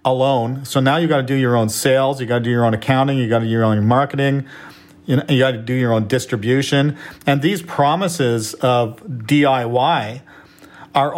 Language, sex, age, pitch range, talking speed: English, male, 50-69, 120-145 Hz, 210 wpm